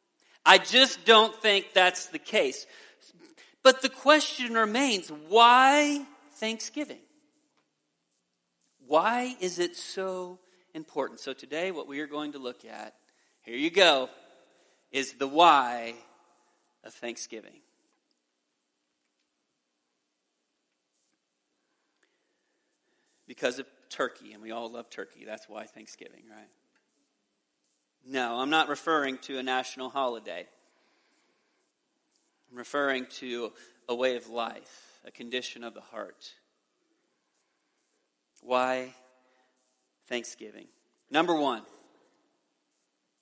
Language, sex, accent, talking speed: English, male, American, 100 wpm